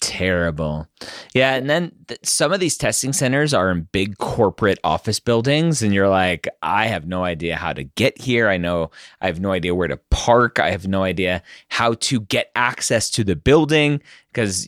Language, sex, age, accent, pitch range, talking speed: English, male, 30-49, American, 90-125 Hz, 195 wpm